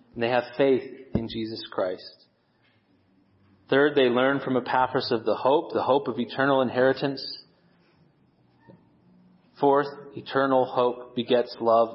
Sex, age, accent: male, 30-49, American